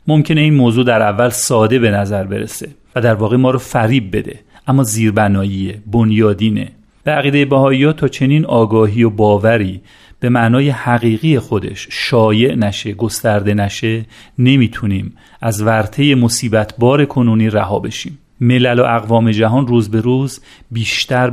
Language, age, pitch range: Persian, 40-59, 110-130 Hz